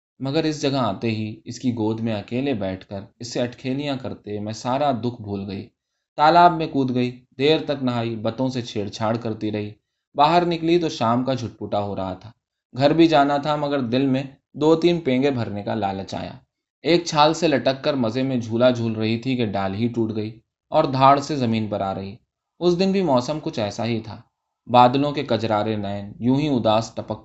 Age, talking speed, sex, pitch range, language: 20-39, 210 wpm, male, 110-145 Hz, Urdu